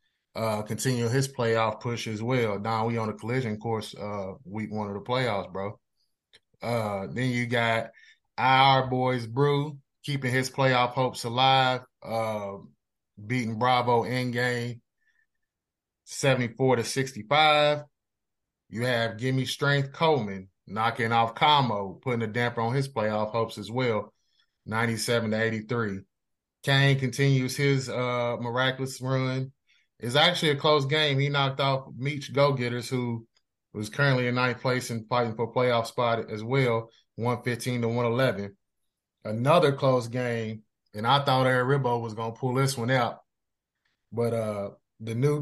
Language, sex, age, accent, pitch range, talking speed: English, male, 20-39, American, 115-135 Hz, 145 wpm